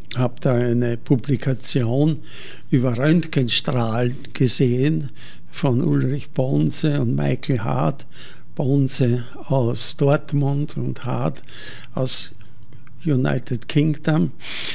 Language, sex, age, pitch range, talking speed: German, male, 60-79, 125-150 Hz, 90 wpm